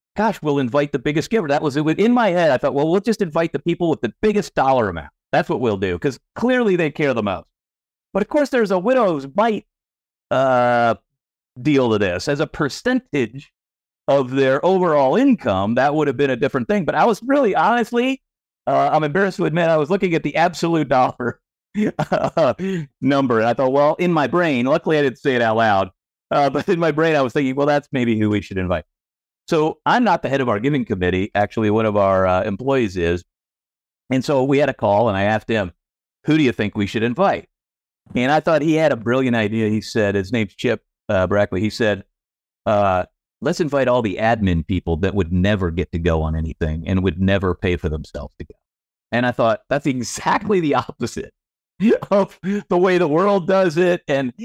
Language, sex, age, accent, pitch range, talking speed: English, male, 50-69, American, 105-170 Hz, 215 wpm